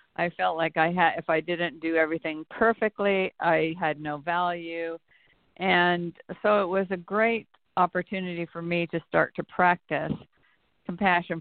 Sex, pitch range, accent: female, 160-180 Hz, American